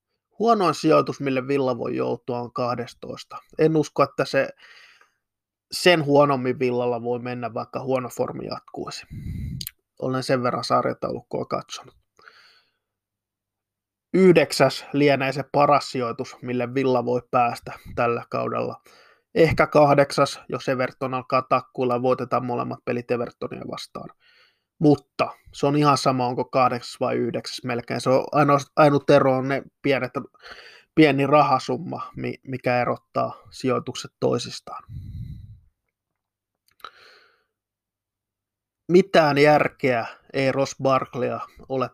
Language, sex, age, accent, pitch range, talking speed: Finnish, male, 20-39, native, 120-140 Hz, 110 wpm